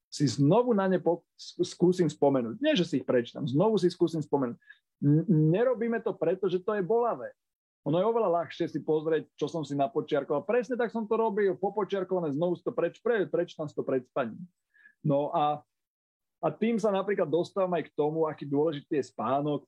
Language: Slovak